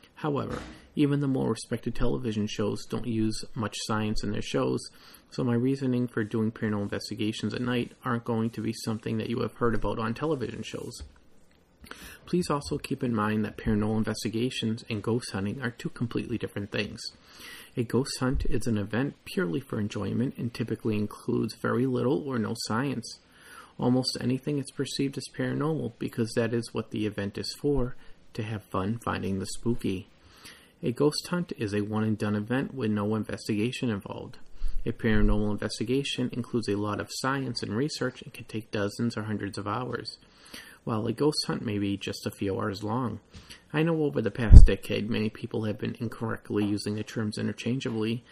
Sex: male